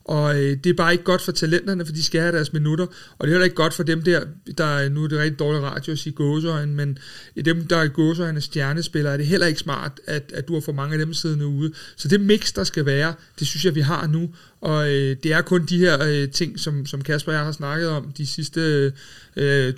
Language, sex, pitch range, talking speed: Danish, male, 145-165 Hz, 265 wpm